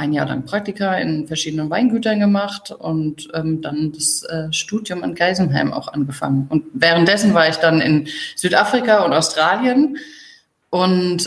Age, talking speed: 30-49, 150 wpm